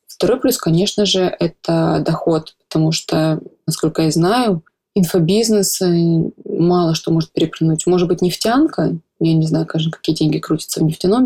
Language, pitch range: Russian, 160-185 Hz